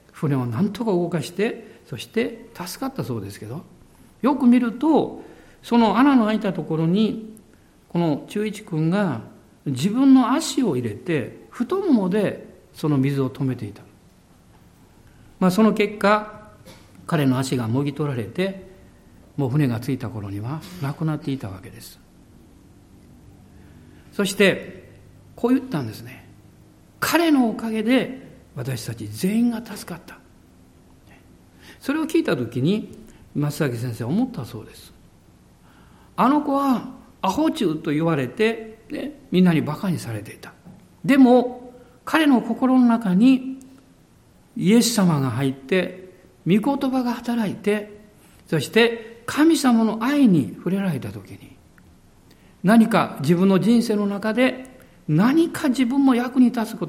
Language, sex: Japanese, male